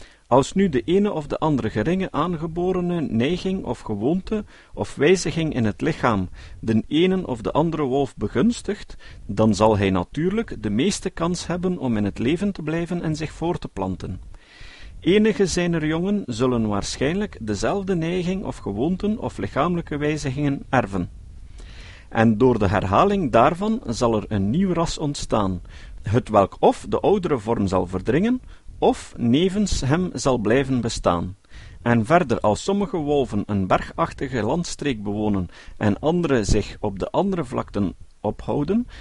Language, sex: Dutch, male